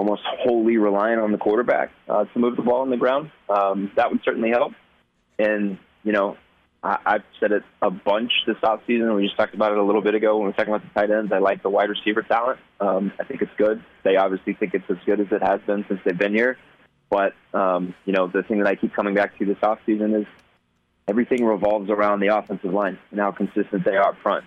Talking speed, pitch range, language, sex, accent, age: 245 wpm, 95-105 Hz, English, male, American, 20-39